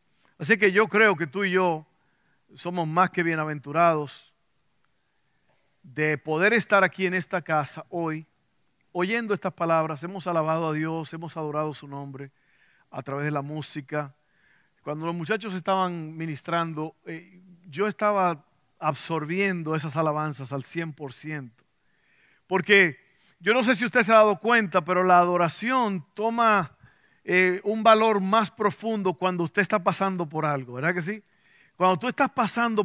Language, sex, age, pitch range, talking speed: Spanish, male, 50-69, 160-205 Hz, 145 wpm